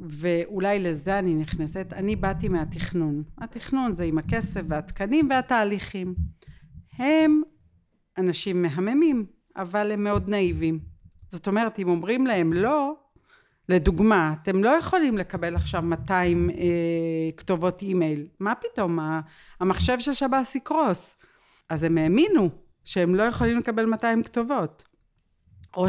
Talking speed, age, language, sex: 125 wpm, 50-69, Hebrew, female